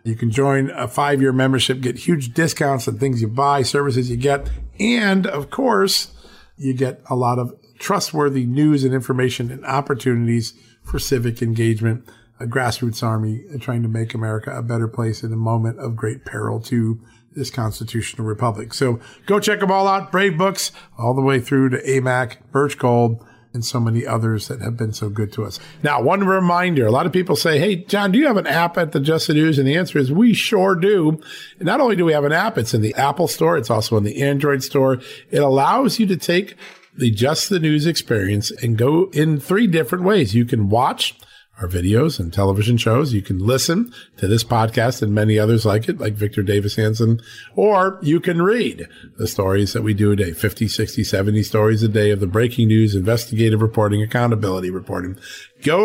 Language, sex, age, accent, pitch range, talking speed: English, male, 40-59, American, 115-155 Hz, 205 wpm